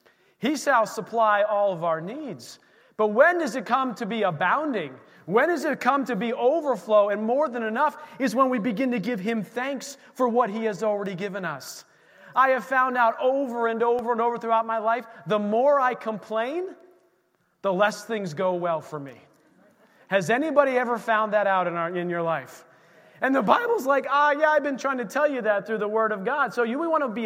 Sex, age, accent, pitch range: male, 30-49, American, 195-250 Hz